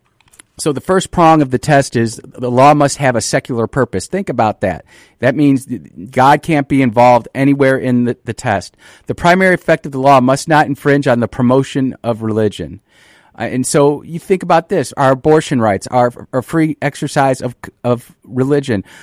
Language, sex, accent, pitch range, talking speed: English, male, American, 115-145 Hz, 190 wpm